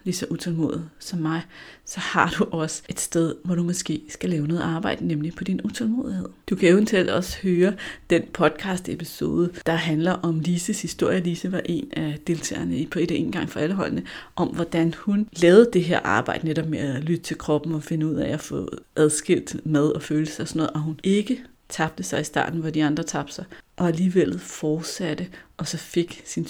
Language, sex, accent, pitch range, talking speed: Danish, female, native, 160-195 Hz, 210 wpm